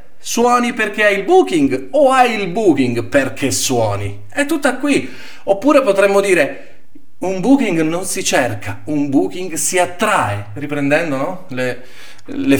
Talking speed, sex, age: 145 wpm, male, 40-59